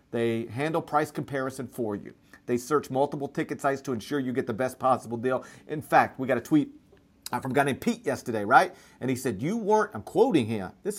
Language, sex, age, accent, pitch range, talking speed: English, male, 40-59, American, 125-155 Hz, 225 wpm